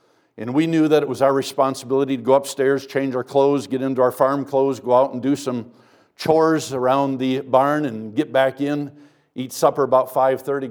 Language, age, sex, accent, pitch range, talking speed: English, 60-79, male, American, 135-155 Hz, 200 wpm